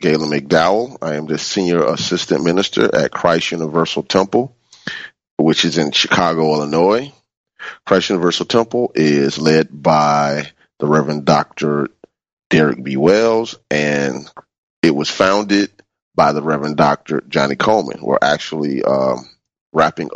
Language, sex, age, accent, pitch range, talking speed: English, male, 30-49, American, 75-90 Hz, 130 wpm